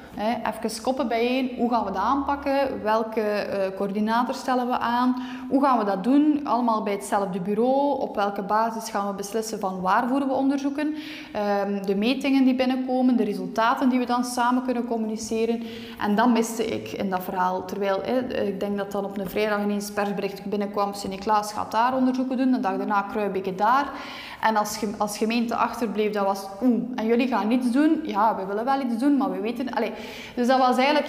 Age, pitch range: 20-39, 210-255 Hz